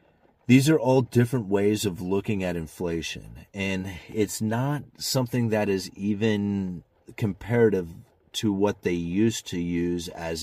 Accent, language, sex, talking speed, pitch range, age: American, English, male, 140 wpm, 85-105 Hz, 30-49